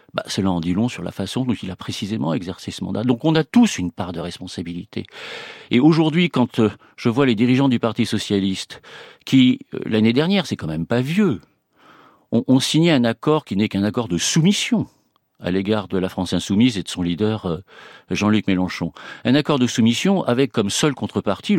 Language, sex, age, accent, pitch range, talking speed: French, male, 50-69, French, 95-140 Hz, 200 wpm